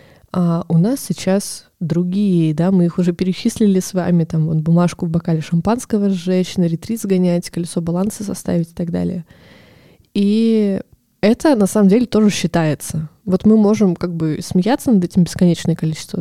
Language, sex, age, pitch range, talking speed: Russian, female, 20-39, 170-195 Hz, 165 wpm